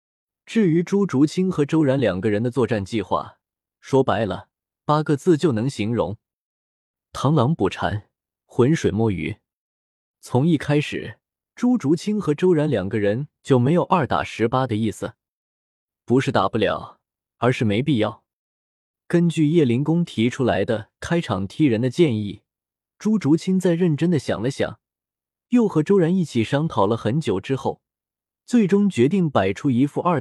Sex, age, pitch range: male, 20-39, 115-175 Hz